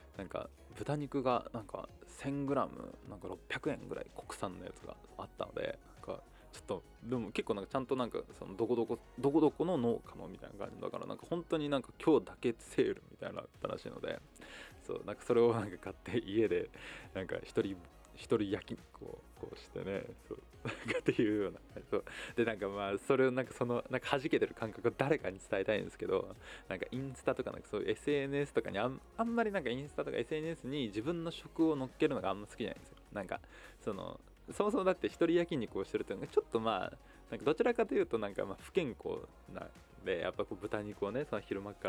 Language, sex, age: Japanese, male, 20-39